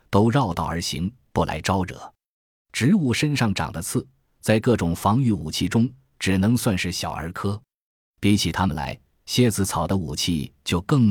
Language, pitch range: Chinese, 85-110 Hz